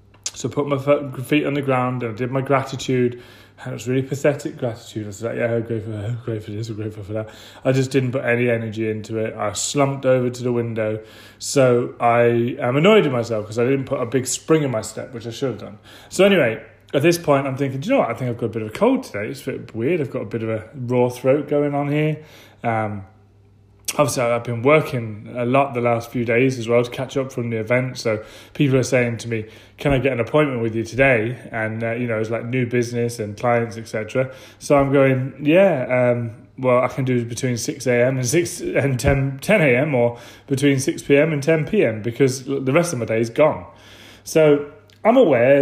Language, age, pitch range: English, 30-49, 115-135 Hz